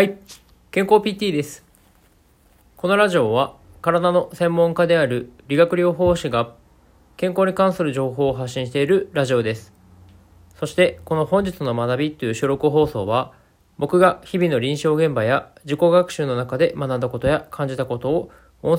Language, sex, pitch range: Japanese, male, 110-170 Hz